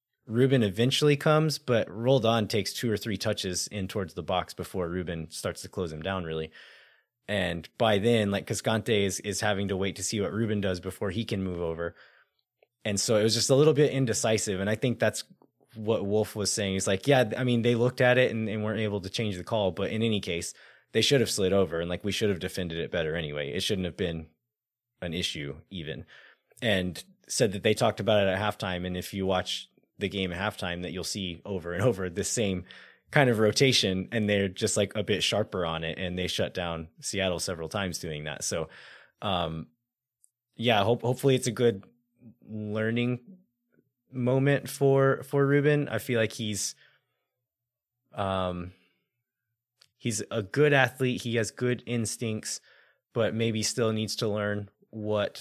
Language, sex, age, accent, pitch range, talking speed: English, male, 20-39, American, 95-120 Hz, 195 wpm